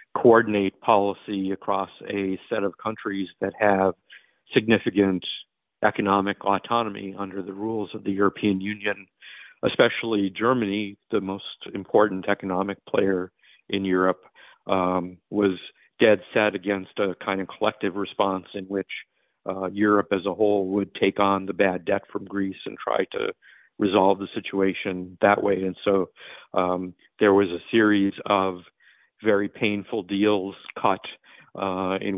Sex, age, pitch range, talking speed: male, 50-69, 95-100 Hz, 140 wpm